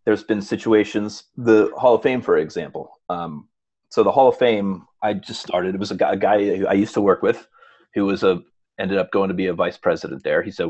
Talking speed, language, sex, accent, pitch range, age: 245 wpm, English, male, American, 95-120 Hz, 30-49